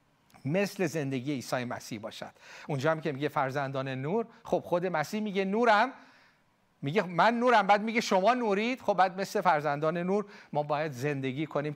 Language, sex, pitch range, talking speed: Persian, male, 170-265 Hz, 165 wpm